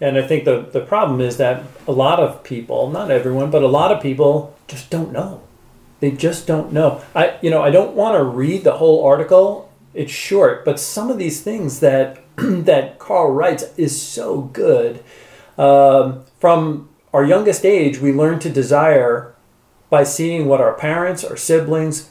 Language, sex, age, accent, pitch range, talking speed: English, male, 40-59, American, 135-165 Hz, 180 wpm